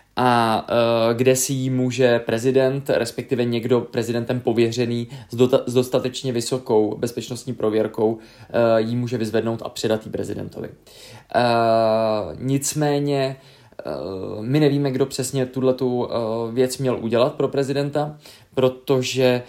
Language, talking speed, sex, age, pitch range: Czech, 125 wpm, male, 20-39, 120-135 Hz